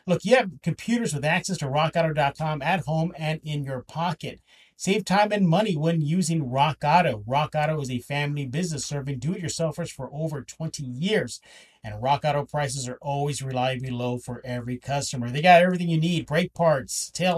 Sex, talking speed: male, 185 wpm